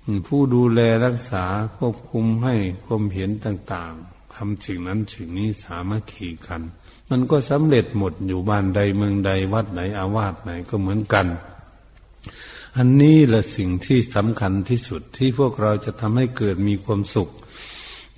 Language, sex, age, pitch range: Thai, male, 60-79, 95-115 Hz